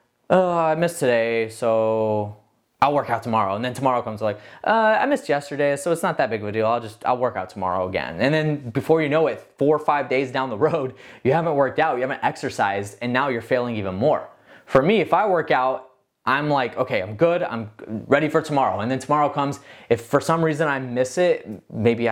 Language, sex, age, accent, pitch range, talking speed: English, male, 20-39, American, 115-155 Hz, 235 wpm